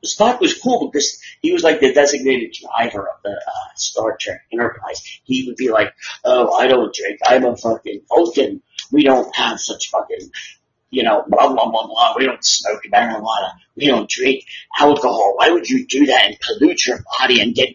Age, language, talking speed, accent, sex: 30-49, English, 195 wpm, American, male